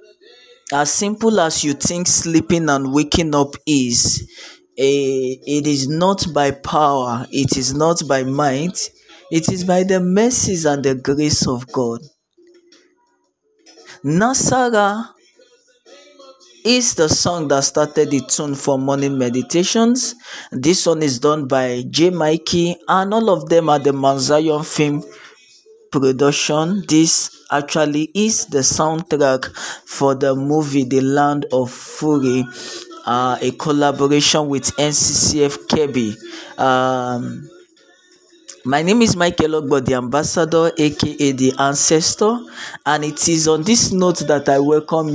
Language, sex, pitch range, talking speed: English, male, 140-185 Hz, 130 wpm